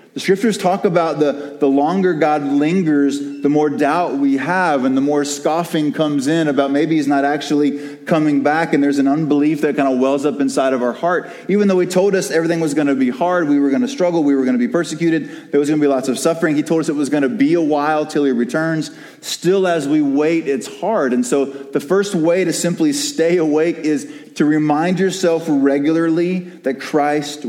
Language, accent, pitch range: English, American, 135-170 Hz